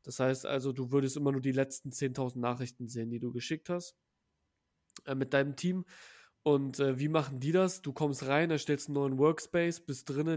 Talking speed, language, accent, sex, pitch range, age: 205 wpm, German, German, male, 135-160 Hz, 20-39